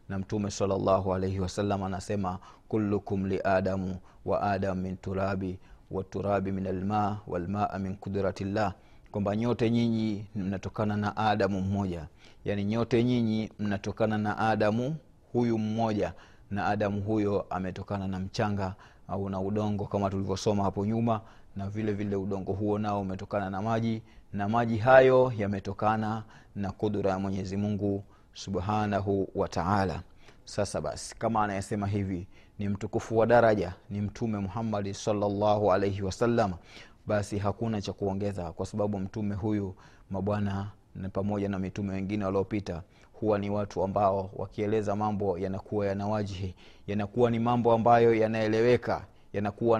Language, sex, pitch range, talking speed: Swahili, male, 95-110 Hz, 135 wpm